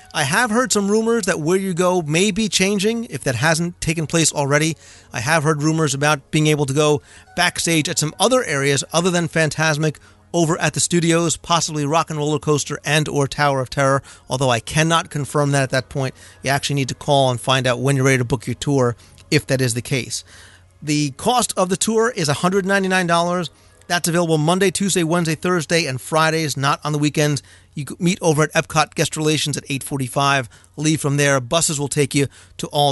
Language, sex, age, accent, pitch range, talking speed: English, male, 40-59, American, 135-165 Hz, 210 wpm